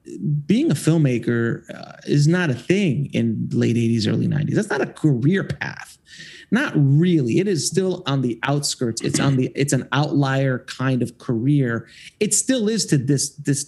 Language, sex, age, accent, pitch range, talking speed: English, male, 30-49, American, 125-165 Hz, 180 wpm